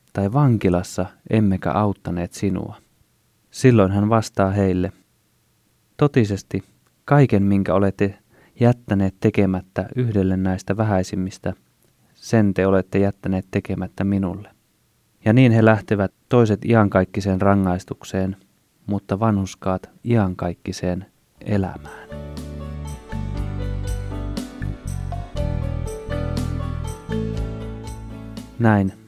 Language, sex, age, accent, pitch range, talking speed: Finnish, male, 20-39, native, 95-110 Hz, 75 wpm